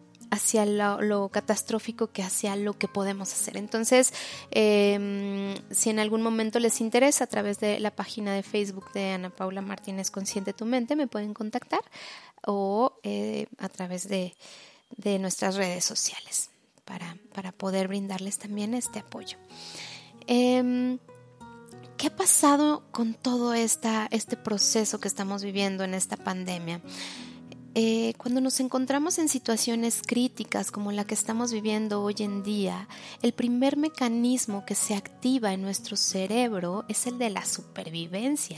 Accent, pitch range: Mexican, 200-245 Hz